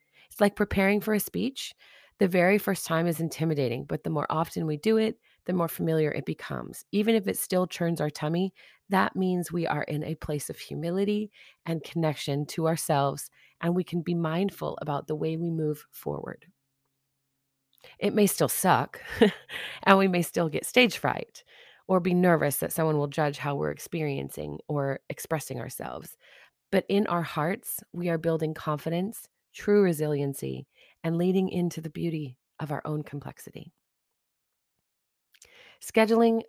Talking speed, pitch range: 165 wpm, 150-185 Hz